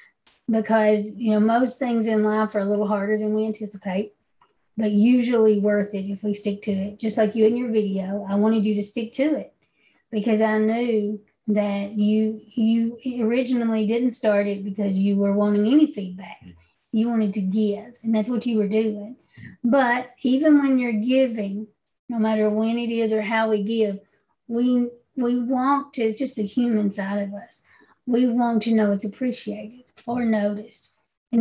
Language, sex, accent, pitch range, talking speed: English, female, American, 210-240 Hz, 185 wpm